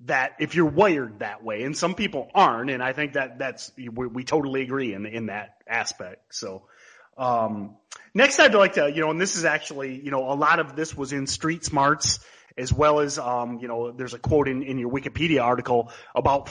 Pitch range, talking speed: 130-160 Hz, 215 wpm